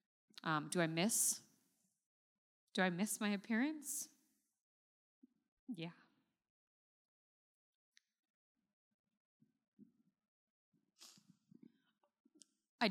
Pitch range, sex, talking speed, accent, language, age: 185-245 Hz, female, 50 wpm, American, English, 20-39